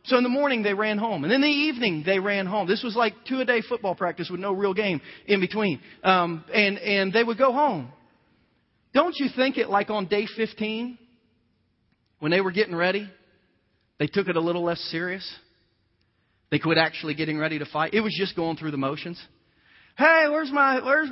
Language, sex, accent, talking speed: English, male, American, 205 wpm